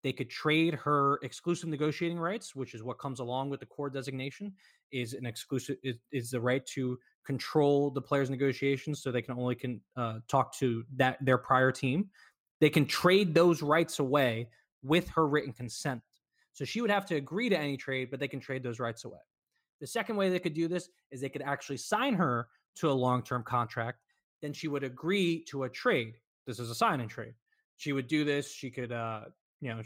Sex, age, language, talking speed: male, 20-39, English, 215 wpm